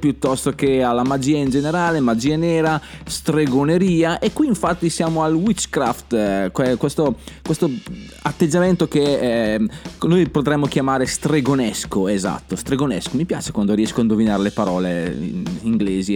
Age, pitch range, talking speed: 20-39, 125-185 Hz, 135 wpm